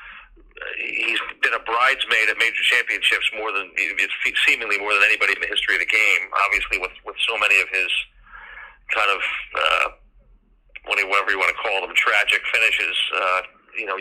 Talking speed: 165 wpm